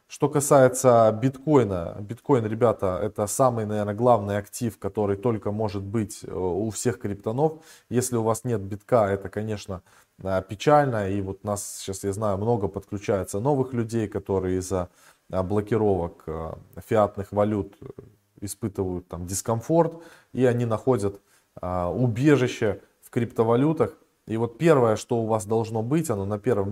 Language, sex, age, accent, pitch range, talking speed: Russian, male, 20-39, native, 100-125 Hz, 135 wpm